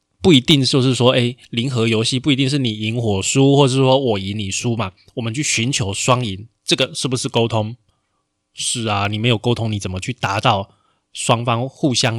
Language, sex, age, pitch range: Chinese, male, 20-39, 105-135 Hz